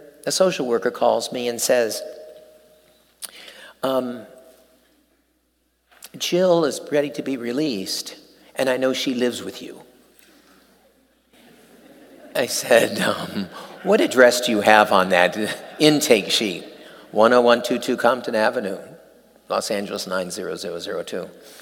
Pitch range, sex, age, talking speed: 120-180 Hz, male, 50-69, 110 wpm